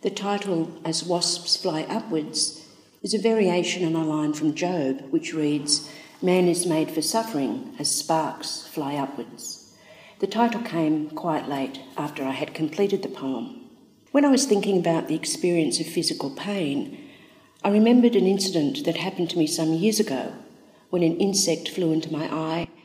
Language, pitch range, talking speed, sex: English, 155-205 Hz, 170 wpm, female